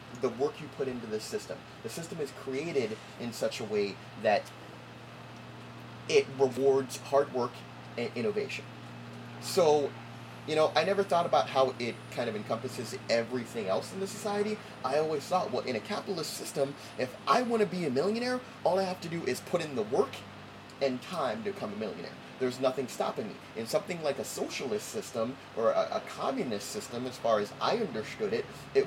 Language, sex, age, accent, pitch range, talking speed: English, male, 30-49, American, 115-185 Hz, 190 wpm